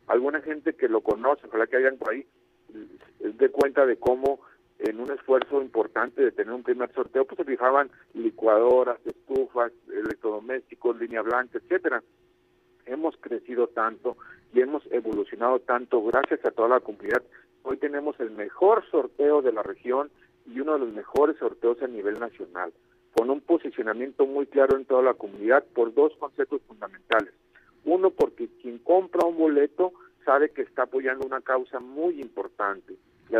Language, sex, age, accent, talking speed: Spanish, male, 50-69, Mexican, 160 wpm